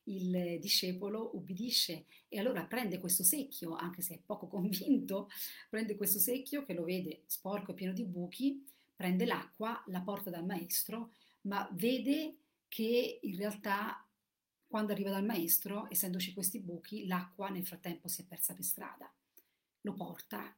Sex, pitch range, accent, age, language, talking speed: female, 180-245 Hz, native, 40-59, Italian, 150 wpm